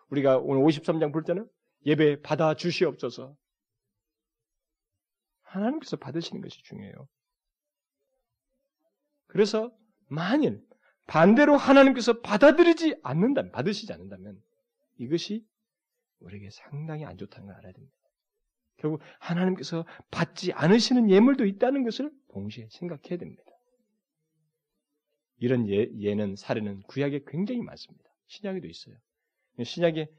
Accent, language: native, Korean